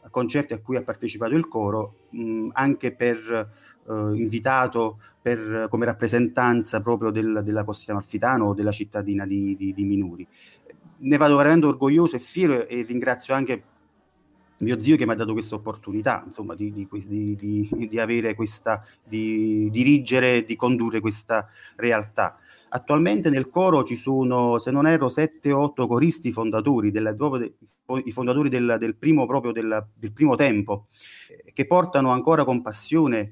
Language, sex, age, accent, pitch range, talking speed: Italian, male, 30-49, native, 110-135 Hz, 160 wpm